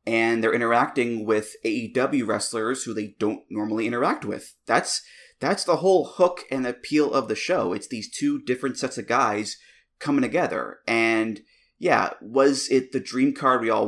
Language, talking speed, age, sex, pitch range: English, 175 wpm, 20-39, male, 110-140 Hz